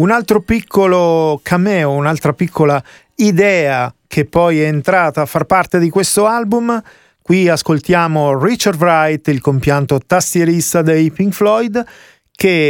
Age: 40-59